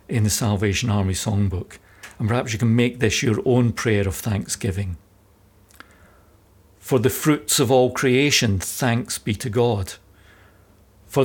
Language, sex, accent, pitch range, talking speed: English, male, British, 100-135 Hz, 145 wpm